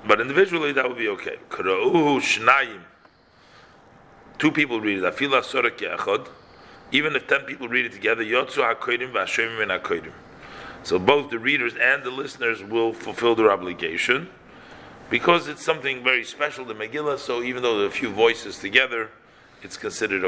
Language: English